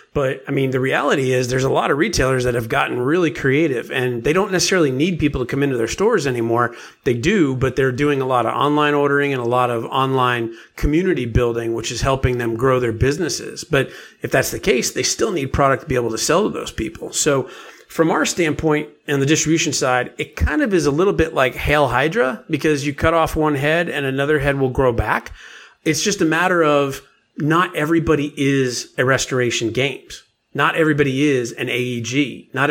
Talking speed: 215 wpm